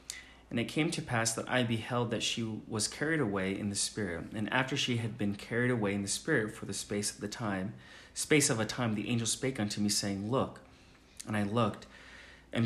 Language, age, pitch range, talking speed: English, 30-49, 100-120 Hz, 225 wpm